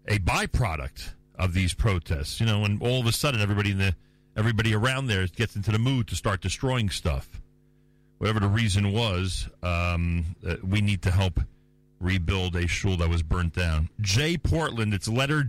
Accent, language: American, English